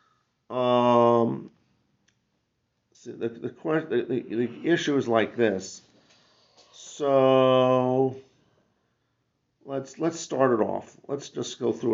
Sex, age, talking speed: male, 50-69, 105 wpm